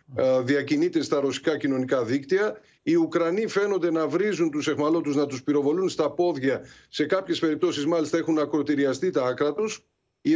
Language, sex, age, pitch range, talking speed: Greek, male, 50-69, 145-185 Hz, 155 wpm